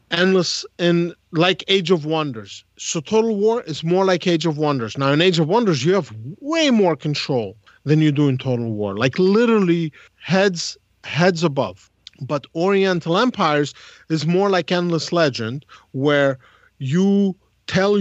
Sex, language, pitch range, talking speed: male, English, 140-180 Hz, 155 wpm